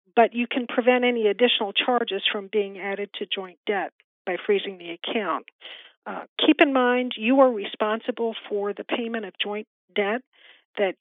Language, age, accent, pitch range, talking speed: English, 50-69, American, 205-250 Hz, 170 wpm